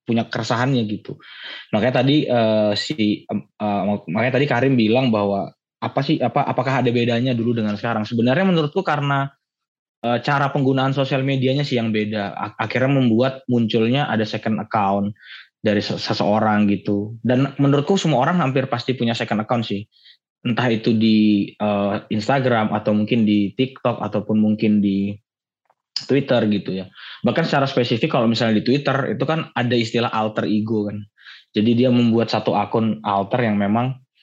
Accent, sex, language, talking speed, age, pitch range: native, male, Indonesian, 155 wpm, 20-39, 110-130 Hz